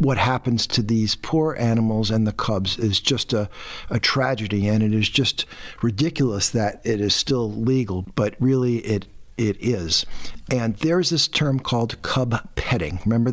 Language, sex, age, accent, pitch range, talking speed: English, male, 50-69, American, 110-135 Hz, 165 wpm